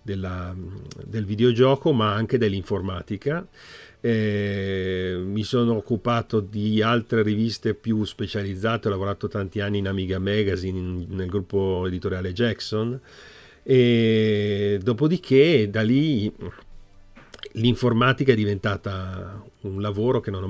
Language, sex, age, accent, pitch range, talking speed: Italian, male, 40-59, native, 100-125 Hz, 115 wpm